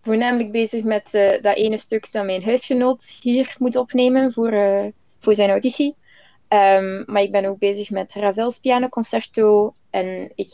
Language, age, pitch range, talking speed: Dutch, 20-39, 195-235 Hz, 155 wpm